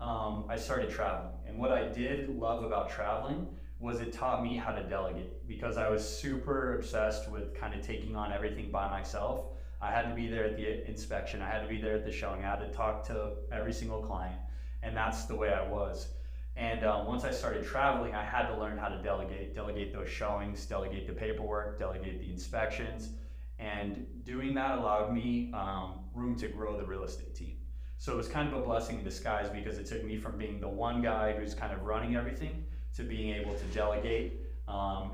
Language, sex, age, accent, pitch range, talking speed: English, male, 20-39, American, 95-115 Hz, 215 wpm